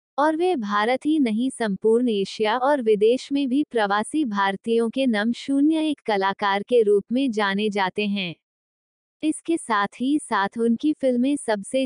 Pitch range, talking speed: 205-270 Hz, 155 wpm